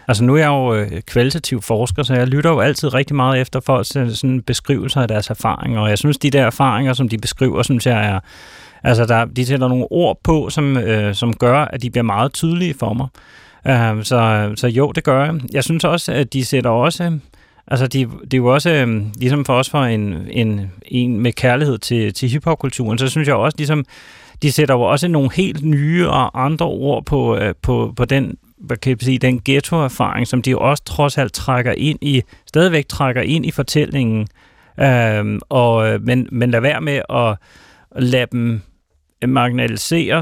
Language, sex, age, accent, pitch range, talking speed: Danish, male, 30-49, native, 115-140 Hz, 190 wpm